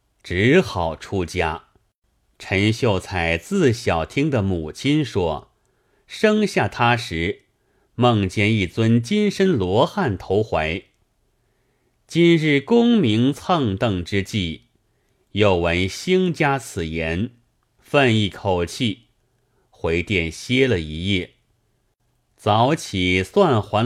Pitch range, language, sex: 95-130 Hz, Chinese, male